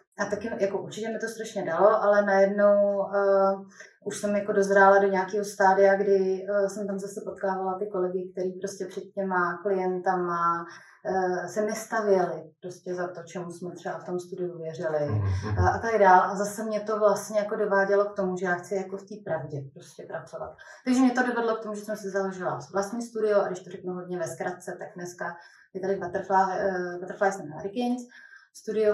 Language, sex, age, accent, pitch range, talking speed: Czech, female, 20-39, native, 185-205 Hz, 195 wpm